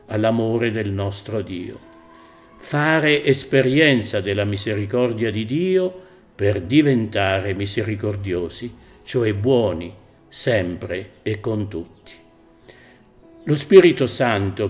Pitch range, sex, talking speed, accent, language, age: 105-135 Hz, male, 90 wpm, native, Italian, 50-69